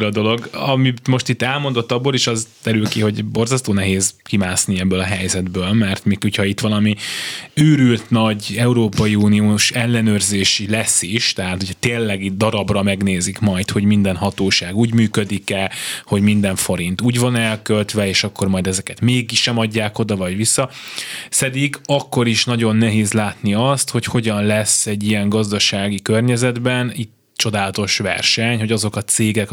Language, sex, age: Hungarian, male, 20-39